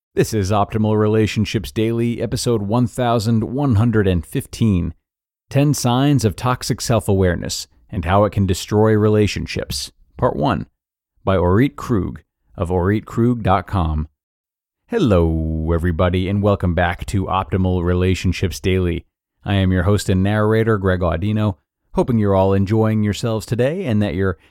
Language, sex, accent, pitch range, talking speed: English, male, American, 90-110 Hz, 125 wpm